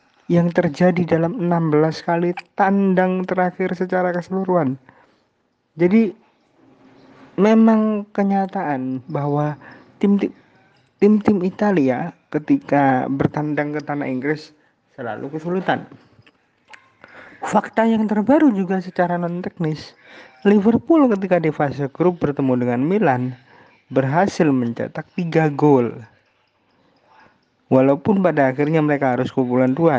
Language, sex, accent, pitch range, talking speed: Indonesian, male, native, 135-185 Hz, 95 wpm